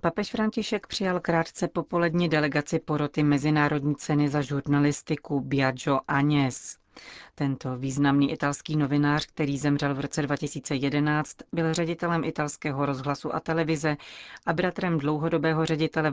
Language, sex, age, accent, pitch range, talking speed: Czech, female, 40-59, native, 145-165 Hz, 120 wpm